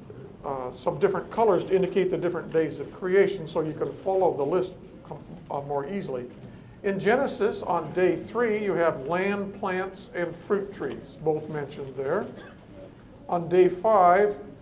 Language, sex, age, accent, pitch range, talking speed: English, male, 50-69, American, 155-195 Hz, 155 wpm